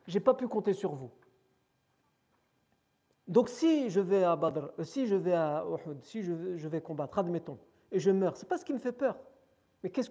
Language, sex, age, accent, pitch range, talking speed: French, male, 50-69, French, 150-200 Hz, 210 wpm